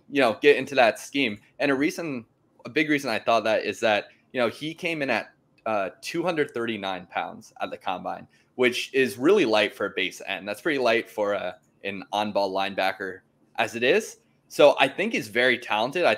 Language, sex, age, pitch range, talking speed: English, male, 20-39, 105-145 Hz, 200 wpm